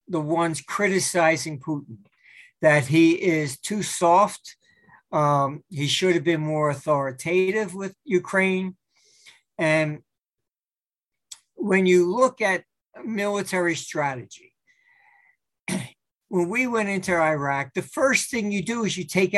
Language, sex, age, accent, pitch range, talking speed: English, male, 60-79, American, 155-195 Hz, 120 wpm